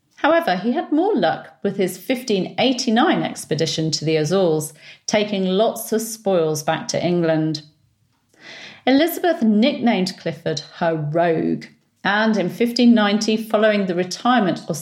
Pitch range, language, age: 155-225 Hz, English, 40-59